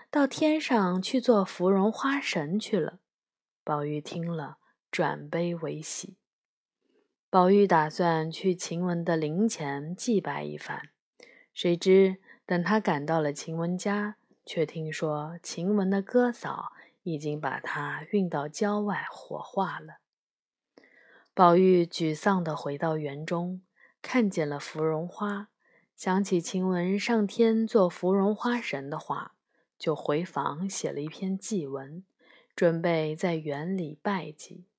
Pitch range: 160-205 Hz